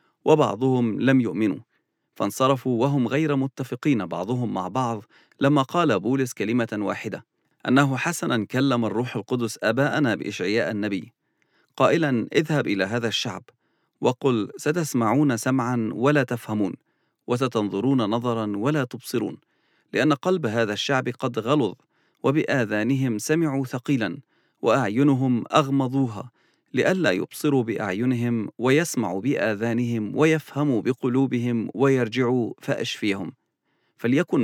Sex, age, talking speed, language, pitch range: male, 40-59, 100 wpm, English, 115-145 Hz